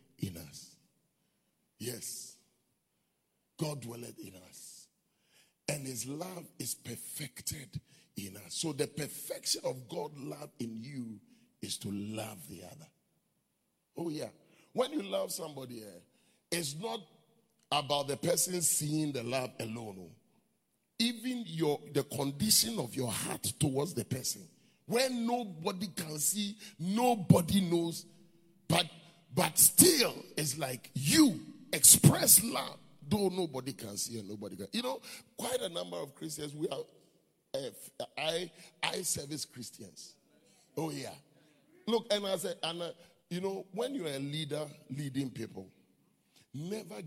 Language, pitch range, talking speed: English, 130-190 Hz, 130 wpm